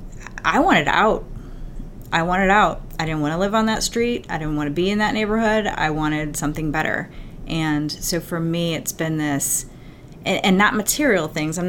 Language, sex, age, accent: English, female, 30-49, American